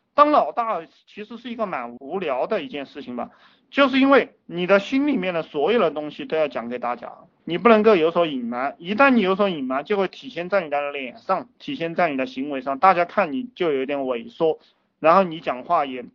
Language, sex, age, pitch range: Chinese, male, 30-49, 140-225 Hz